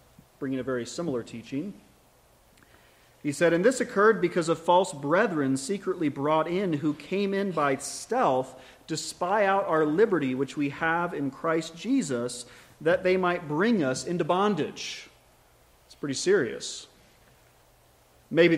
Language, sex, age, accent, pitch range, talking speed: English, male, 30-49, American, 135-185 Hz, 140 wpm